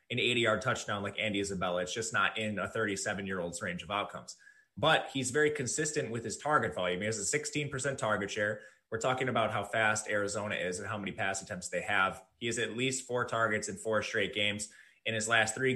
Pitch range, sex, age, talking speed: 105-130 Hz, male, 20-39, 215 wpm